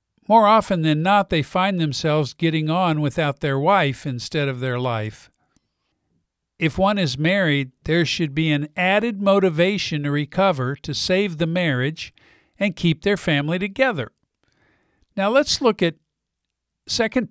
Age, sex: 50-69, male